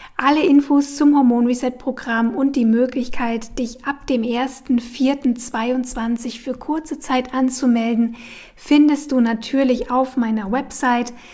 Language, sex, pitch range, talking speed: German, female, 235-265 Hz, 110 wpm